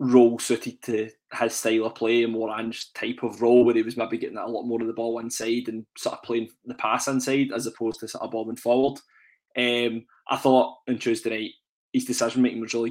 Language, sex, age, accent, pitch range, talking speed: English, male, 20-39, British, 115-130 Hz, 230 wpm